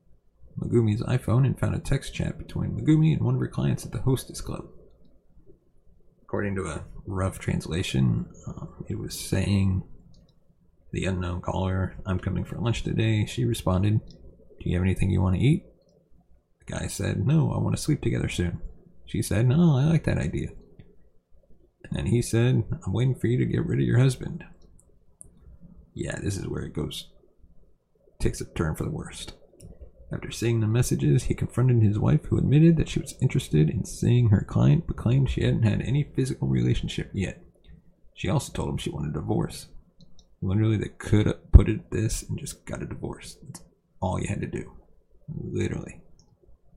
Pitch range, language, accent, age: 95-130 Hz, English, American, 30-49